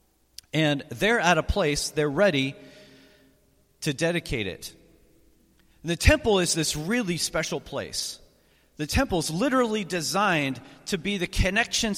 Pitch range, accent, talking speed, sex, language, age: 165-245 Hz, American, 130 wpm, male, English, 40-59